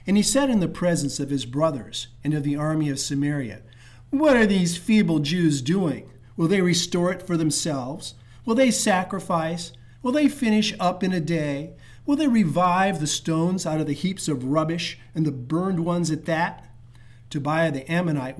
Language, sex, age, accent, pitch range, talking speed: English, male, 50-69, American, 130-185 Hz, 185 wpm